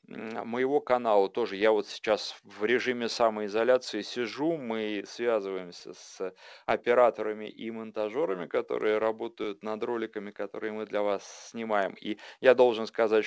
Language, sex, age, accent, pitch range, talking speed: Russian, male, 30-49, native, 100-120 Hz, 130 wpm